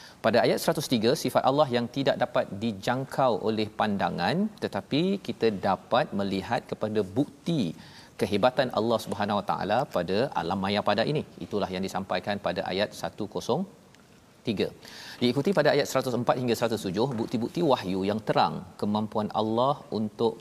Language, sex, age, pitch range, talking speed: Malayalam, male, 40-59, 100-125 Hz, 135 wpm